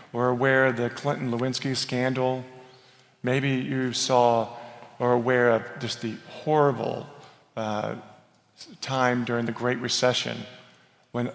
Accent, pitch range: American, 125-150 Hz